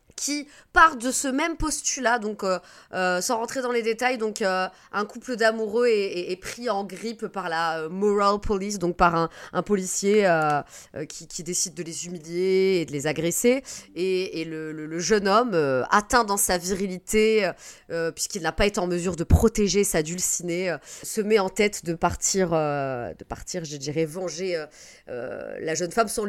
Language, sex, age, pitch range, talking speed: French, female, 30-49, 175-240 Hz, 205 wpm